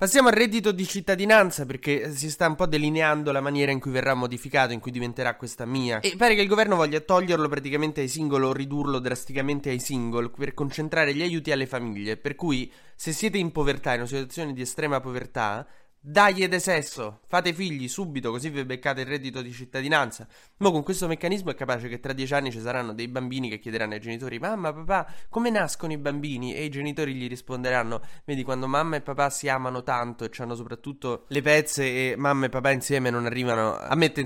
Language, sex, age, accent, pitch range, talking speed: Italian, male, 20-39, native, 120-150 Hz, 210 wpm